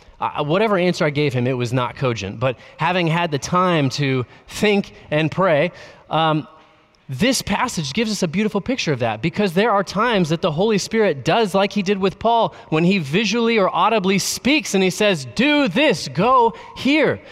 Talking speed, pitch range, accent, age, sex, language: 195 wpm, 155-205 Hz, American, 20-39, male, English